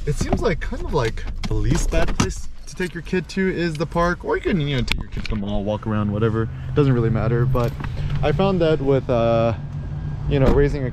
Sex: male